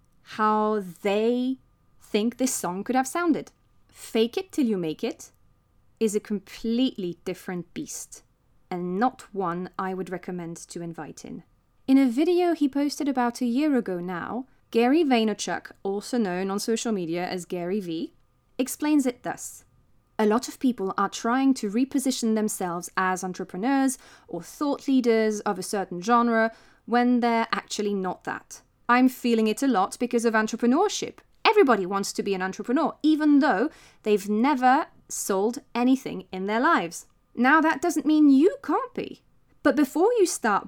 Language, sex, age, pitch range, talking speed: English, female, 20-39, 195-275 Hz, 160 wpm